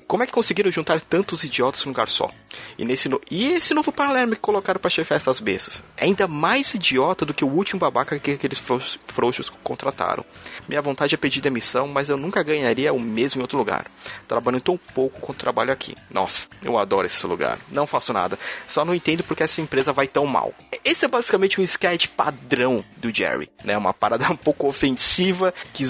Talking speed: 205 wpm